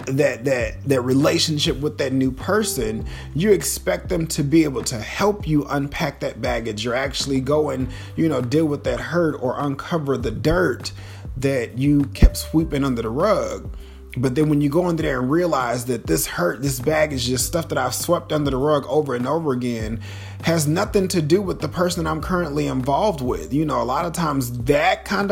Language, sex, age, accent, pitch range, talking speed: English, male, 30-49, American, 115-145 Hz, 205 wpm